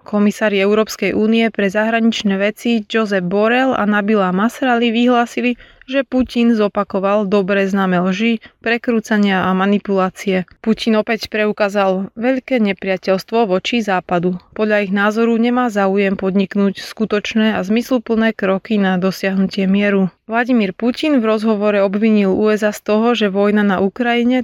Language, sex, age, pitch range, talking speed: Slovak, female, 20-39, 200-230 Hz, 130 wpm